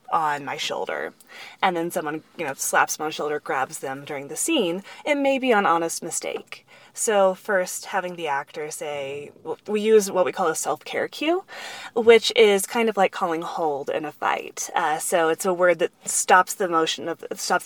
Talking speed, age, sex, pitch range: 200 wpm, 20-39, female, 155-210 Hz